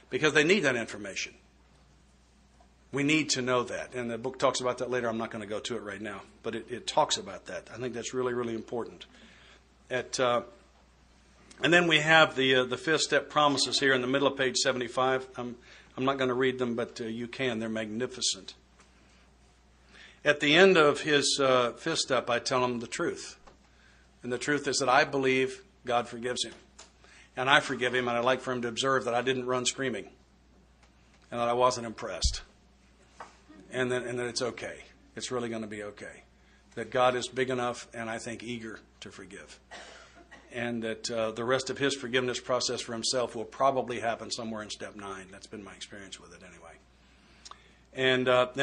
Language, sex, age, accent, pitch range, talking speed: English, male, 60-79, American, 115-135 Hz, 200 wpm